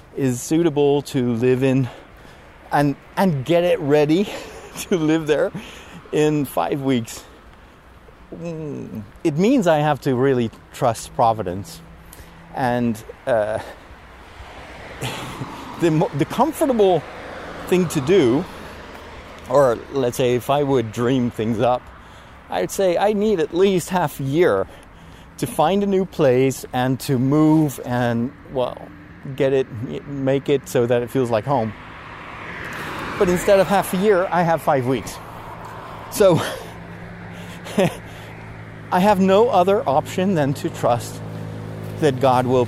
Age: 30-49